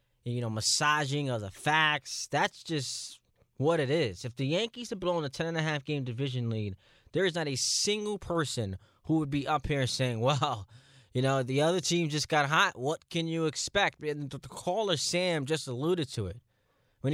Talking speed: 195 wpm